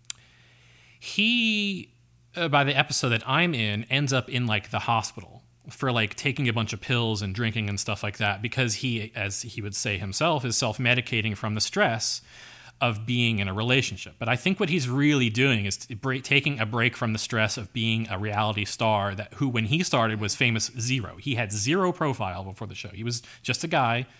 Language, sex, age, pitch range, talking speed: English, male, 30-49, 105-130 Hz, 210 wpm